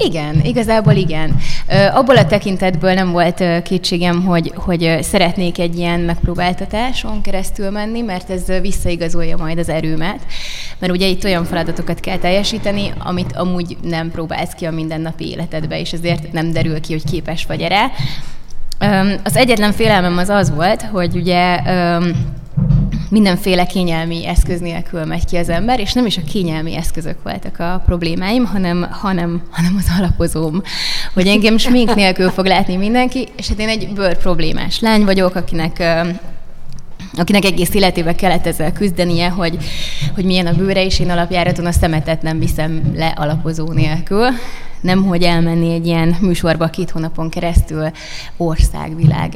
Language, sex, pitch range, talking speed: Hungarian, female, 160-190 Hz, 155 wpm